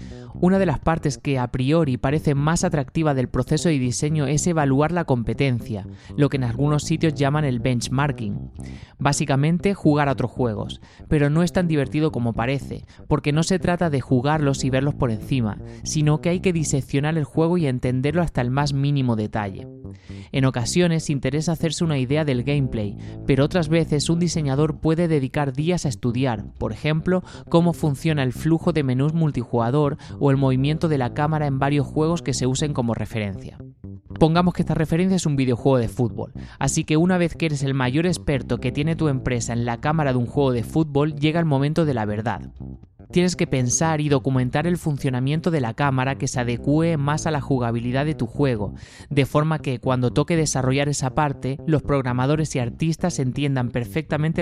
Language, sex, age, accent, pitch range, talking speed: Spanish, male, 20-39, Spanish, 125-155 Hz, 190 wpm